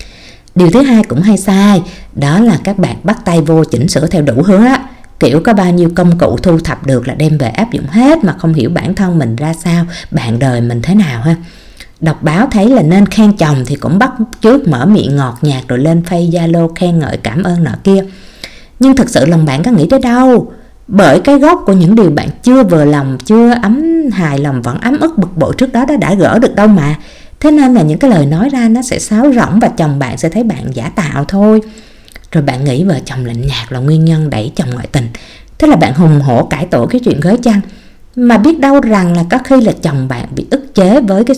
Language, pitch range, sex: Vietnamese, 155-225 Hz, female